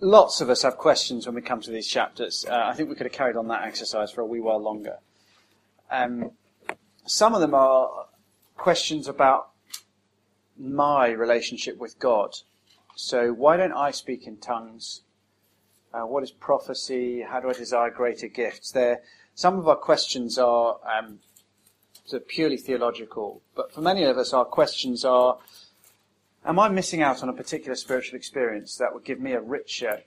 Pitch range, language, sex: 105-140 Hz, English, male